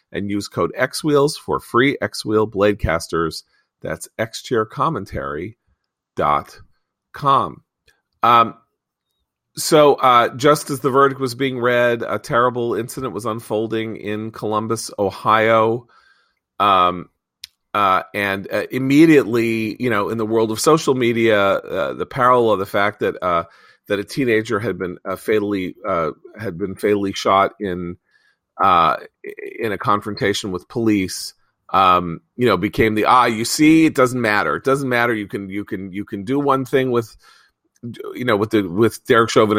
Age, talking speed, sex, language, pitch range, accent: 40-59, 155 wpm, male, English, 100-125 Hz, American